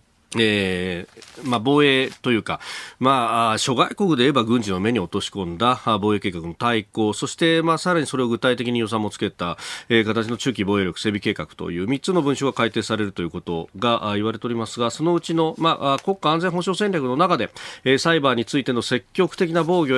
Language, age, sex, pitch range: Japanese, 40-59, male, 110-155 Hz